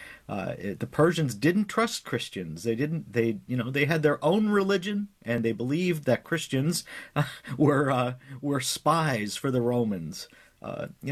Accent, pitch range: American, 125-180 Hz